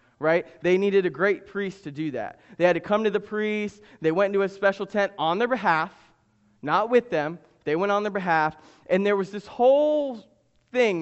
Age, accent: 20-39, American